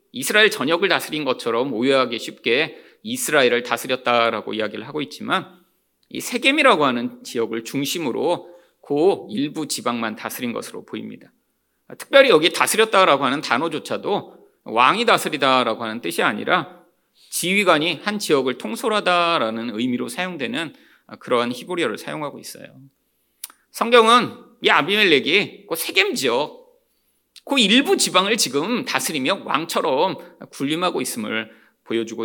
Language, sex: Korean, male